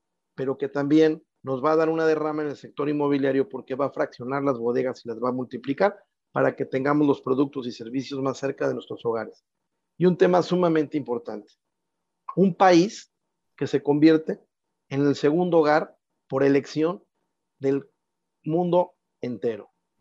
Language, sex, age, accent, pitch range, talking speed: Spanish, male, 40-59, Mexican, 130-155 Hz, 165 wpm